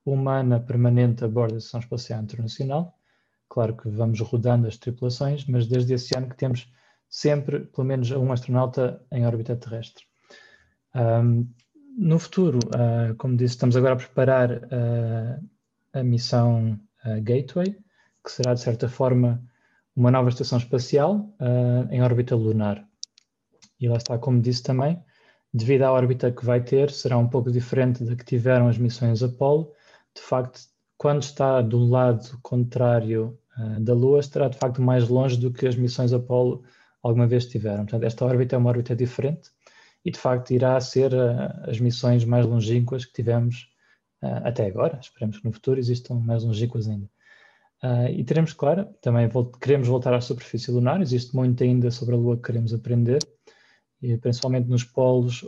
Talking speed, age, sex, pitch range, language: 160 wpm, 20-39, male, 120-130 Hz, Portuguese